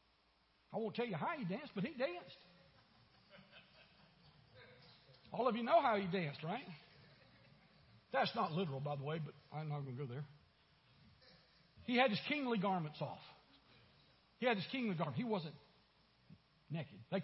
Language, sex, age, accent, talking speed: English, male, 60-79, American, 160 wpm